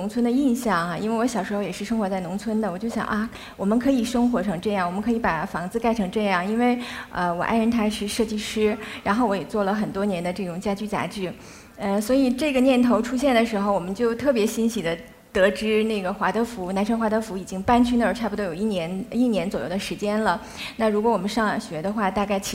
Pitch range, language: 195-235 Hz, Chinese